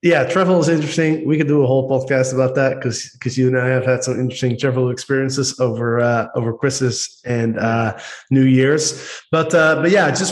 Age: 20-39